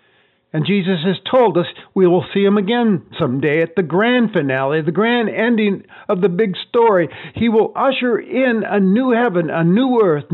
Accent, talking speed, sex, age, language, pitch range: American, 185 wpm, male, 50-69, English, 150-205 Hz